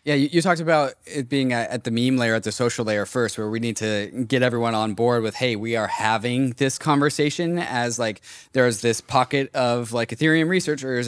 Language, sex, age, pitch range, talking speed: English, male, 20-39, 120-160 Hz, 225 wpm